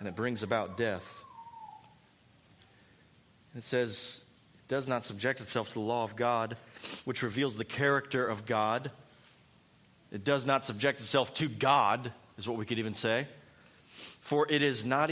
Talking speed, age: 160 wpm, 30-49